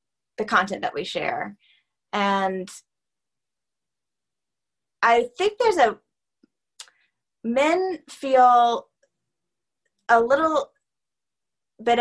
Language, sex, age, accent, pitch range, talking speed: English, female, 20-39, American, 180-235 Hz, 75 wpm